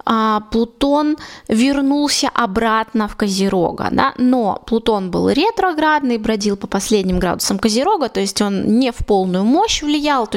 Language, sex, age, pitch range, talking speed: Russian, female, 20-39, 205-265 Hz, 135 wpm